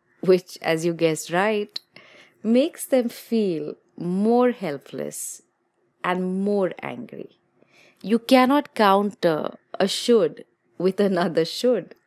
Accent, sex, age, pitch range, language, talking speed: Indian, female, 30-49, 160-245 Hz, English, 105 wpm